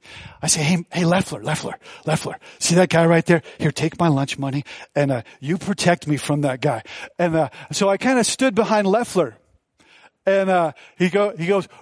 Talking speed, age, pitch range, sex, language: 205 wpm, 40-59, 160-215 Hz, male, English